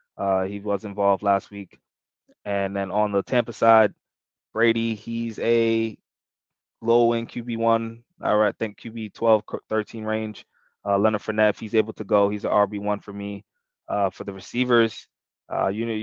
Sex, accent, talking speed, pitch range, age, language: male, American, 160 wpm, 100-115 Hz, 20-39, English